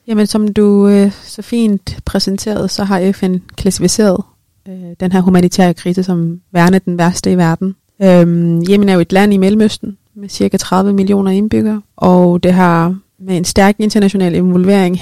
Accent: native